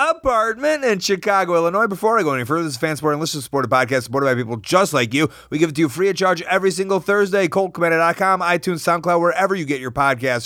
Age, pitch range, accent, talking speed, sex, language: 30-49, 135-180 Hz, American, 230 wpm, male, English